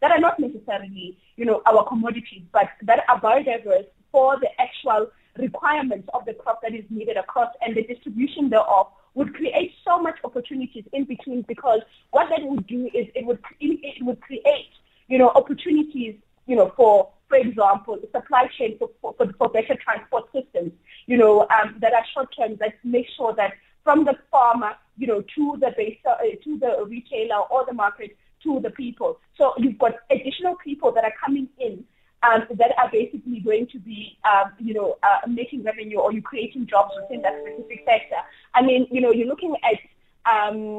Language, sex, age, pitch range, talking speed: English, female, 30-49, 220-275 Hz, 190 wpm